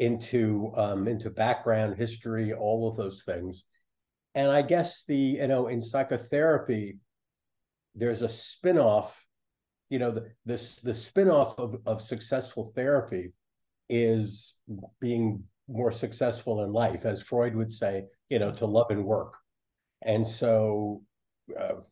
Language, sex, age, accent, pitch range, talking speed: English, male, 50-69, American, 105-125 Hz, 135 wpm